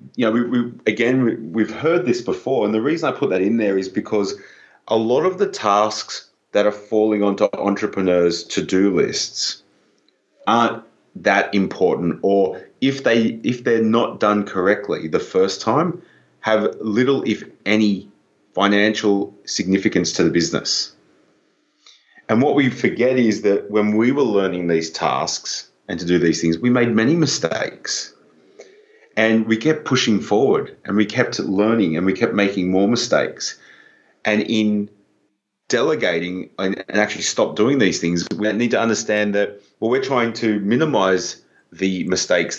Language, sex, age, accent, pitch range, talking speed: English, male, 30-49, Australian, 95-120 Hz, 160 wpm